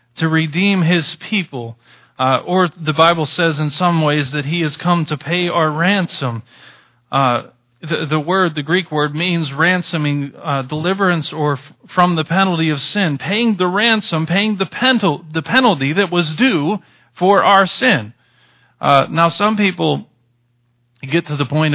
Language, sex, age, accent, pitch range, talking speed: English, male, 40-59, American, 145-195 Hz, 165 wpm